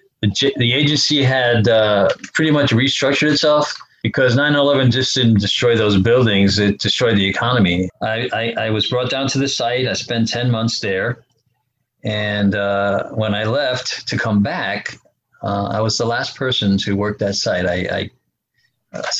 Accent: American